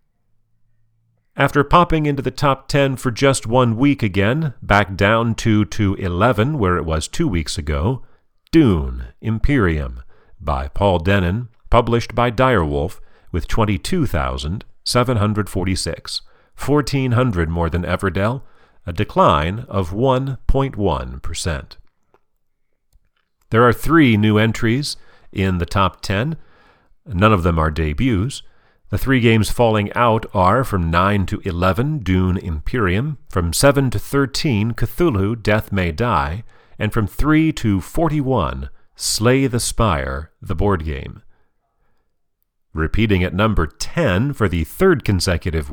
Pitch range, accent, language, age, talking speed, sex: 90-125 Hz, American, English, 40-59, 120 wpm, male